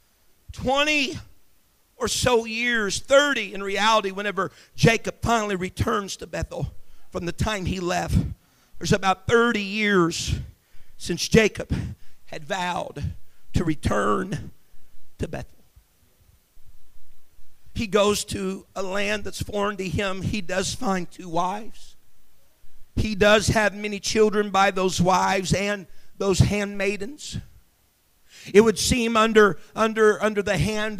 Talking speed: 120 wpm